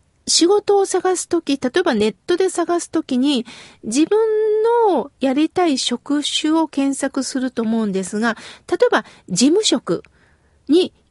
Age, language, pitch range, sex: 40-59, Japanese, 240-370 Hz, female